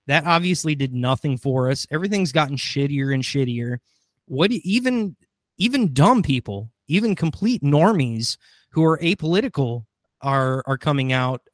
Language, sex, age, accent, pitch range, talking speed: English, male, 20-39, American, 130-160 Hz, 135 wpm